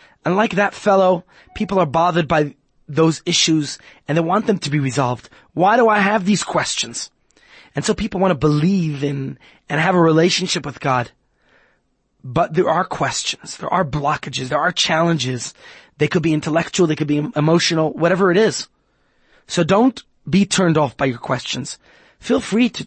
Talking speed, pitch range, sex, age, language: 180 wpm, 150-200 Hz, male, 30-49, English